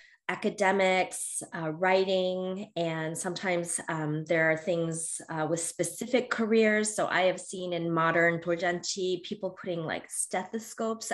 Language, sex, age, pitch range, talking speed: English, female, 20-39, 170-220 Hz, 130 wpm